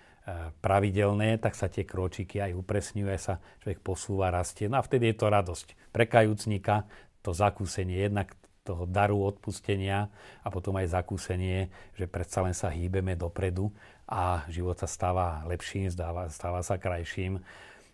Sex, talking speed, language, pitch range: male, 145 wpm, Slovak, 90-100 Hz